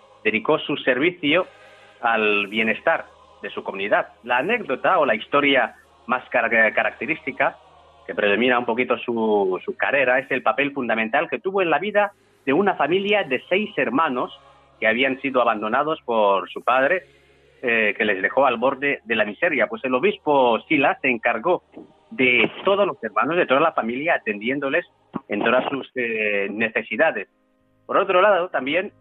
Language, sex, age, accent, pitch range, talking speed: Spanish, male, 40-59, Spanish, 105-135 Hz, 160 wpm